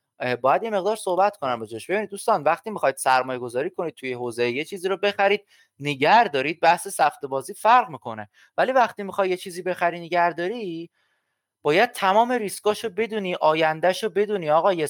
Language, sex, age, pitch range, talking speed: Persian, male, 30-49, 130-205 Hz, 175 wpm